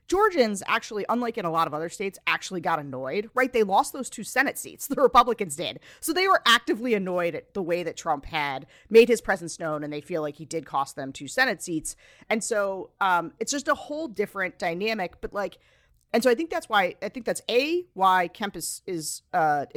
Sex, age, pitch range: female, 40-59, 165-235 Hz